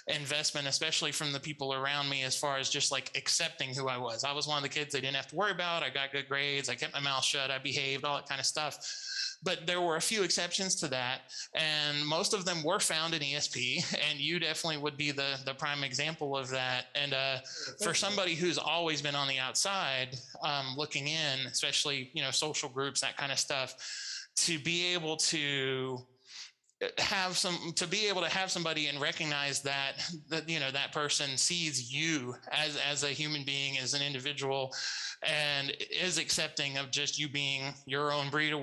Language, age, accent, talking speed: English, 20-39, American, 210 wpm